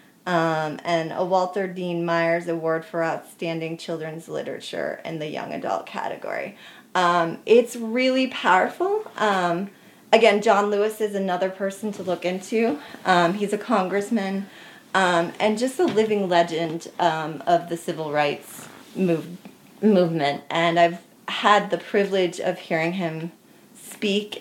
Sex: female